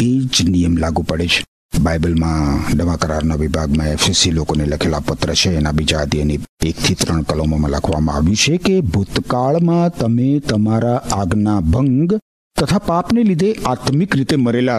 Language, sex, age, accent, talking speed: Gujarati, male, 50-69, native, 145 wpm